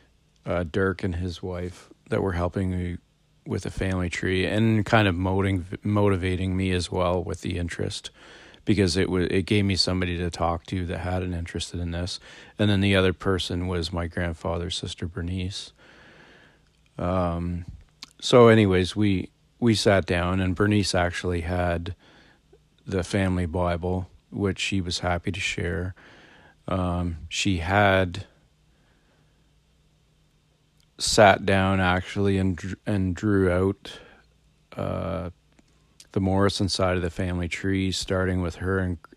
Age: 40-59